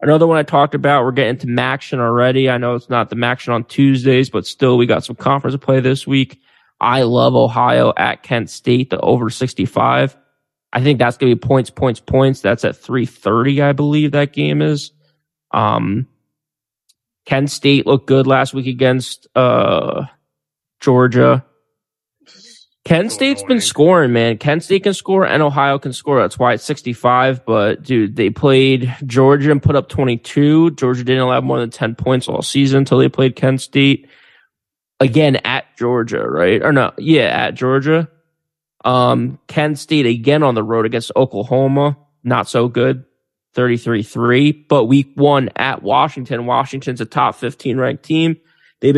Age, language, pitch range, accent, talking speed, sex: 20-39, English, 120-145 Hz, American, 165 wpm, male